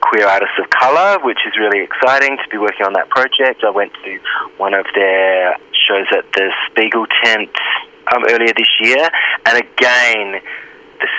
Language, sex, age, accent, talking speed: English, male, 20-39, Australian, 170 wpm